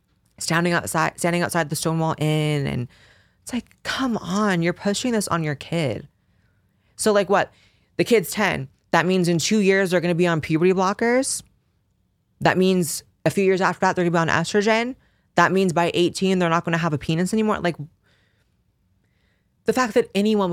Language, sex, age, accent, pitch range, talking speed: English, female, 20-39, American, 130-175 Hz, 185 wpm